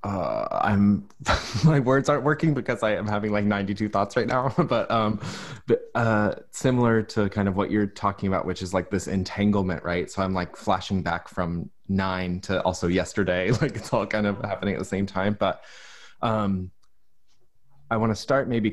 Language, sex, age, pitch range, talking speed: English, male, 20-39, 90-110 Hz, 190 wpm